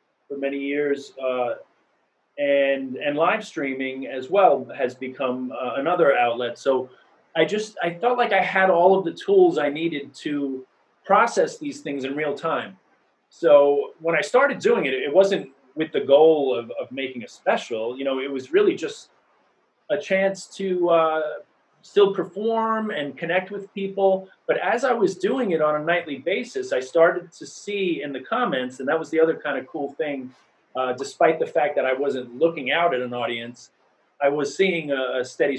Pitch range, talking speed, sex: 135-195 Hz, 190 wpm, male